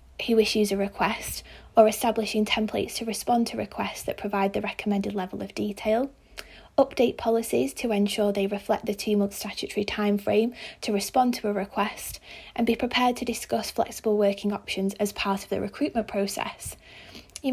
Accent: British